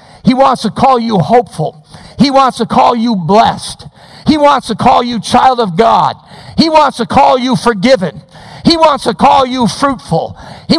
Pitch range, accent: 155-225 Hz, American